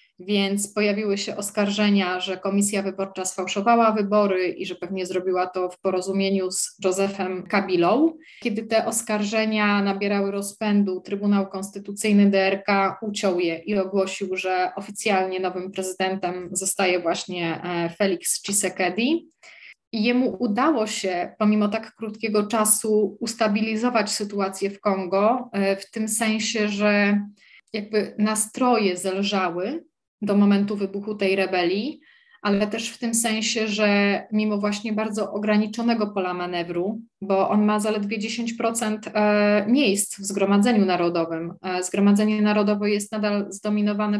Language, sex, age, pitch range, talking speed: Polish, female, 20-39, 195-220 Hz, 120 wpm